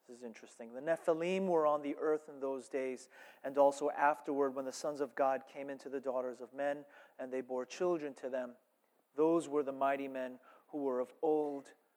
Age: 30-49